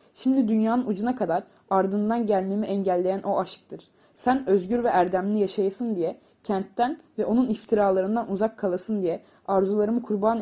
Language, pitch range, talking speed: Turkish, 190-220 Hz, 140 wpm